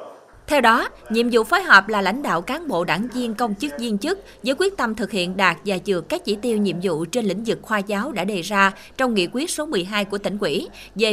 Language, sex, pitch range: Vietnamese, female, 190-235 Hz